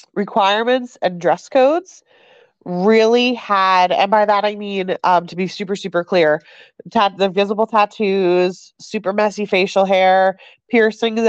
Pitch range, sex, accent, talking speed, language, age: 185-225 Hz, female, American, 135 wpm, English, 30-49